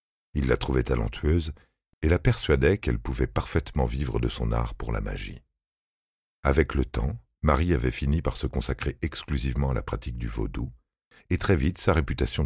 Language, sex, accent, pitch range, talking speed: French, male, French, 65-85 Hz, 180 wpm